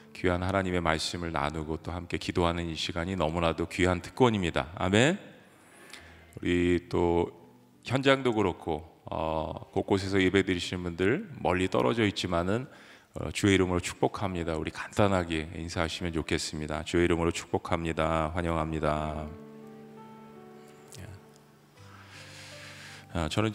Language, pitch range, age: Korean, 80-100 Hz, 30-49